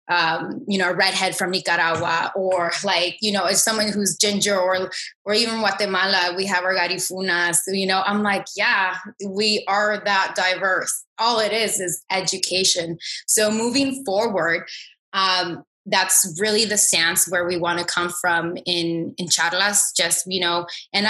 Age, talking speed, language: 20-39, 170 wpm, English